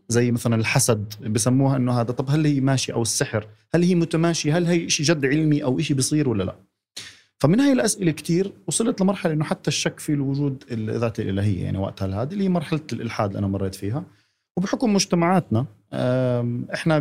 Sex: male